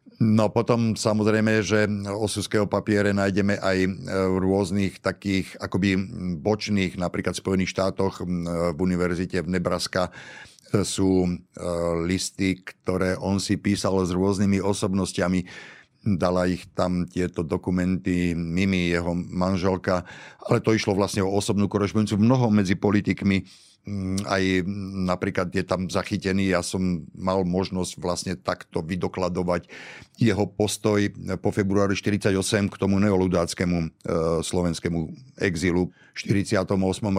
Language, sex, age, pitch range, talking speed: Slovak, male, 50-69, 90-100 Hz, 115 wpm